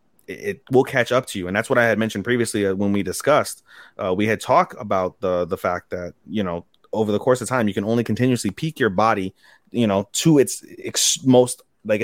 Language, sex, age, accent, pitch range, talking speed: English, male, 30-49, American, 105-140 Hz, 230 wpm